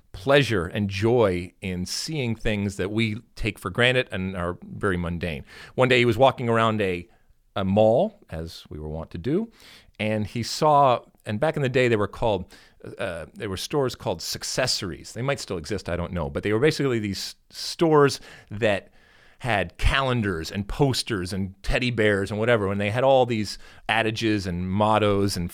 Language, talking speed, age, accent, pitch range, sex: English, 185 wpm, 40-59, American, 90-120 Hz, male